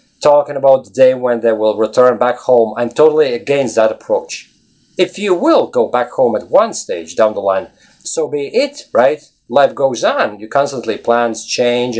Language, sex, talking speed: English, male, 190 wpm